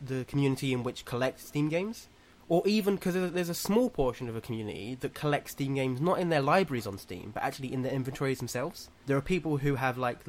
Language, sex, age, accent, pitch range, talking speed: English, male, 20-39, British, 115-155 Hz, 225 wpm